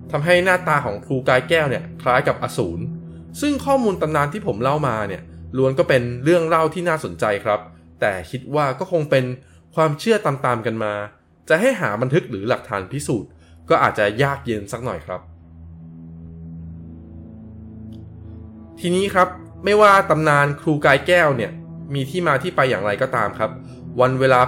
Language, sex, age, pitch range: Thai, male, 20-39, 95-155 Hz